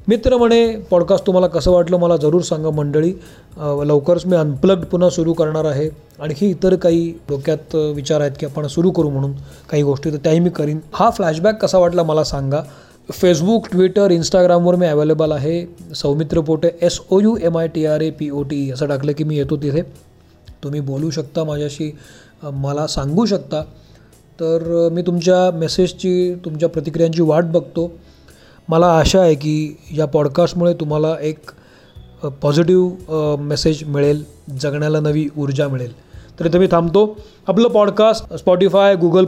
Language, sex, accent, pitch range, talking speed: Marathi, male, native, 150-180 Hz, 155 wpm